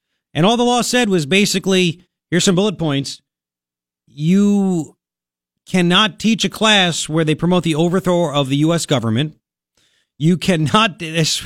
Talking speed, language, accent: 145 wpm, English, American